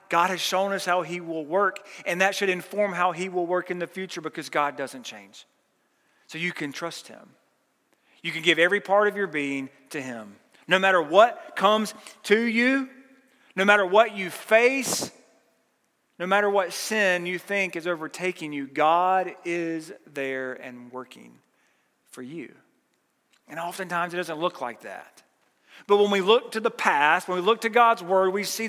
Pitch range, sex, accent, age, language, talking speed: 150-200 Hz, male, American, 40-59, English, 180 wpm